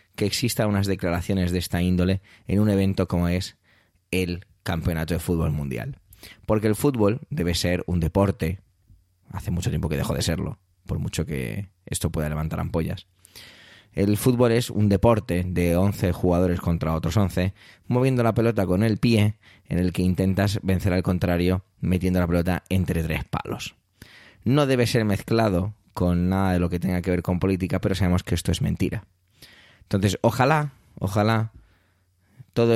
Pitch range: 90-115 Hz